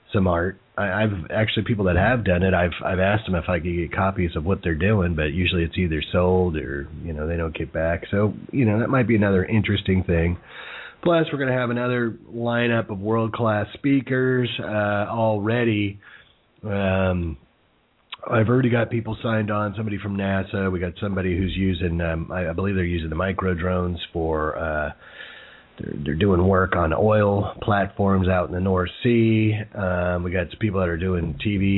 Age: 30-49